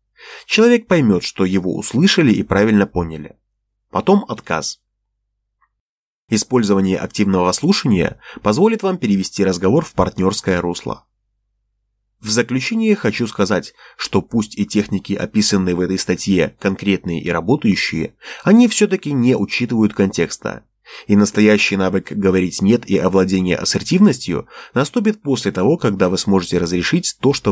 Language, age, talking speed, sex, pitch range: Russian, 30-49, 125 wpm, male, 90-135 Hz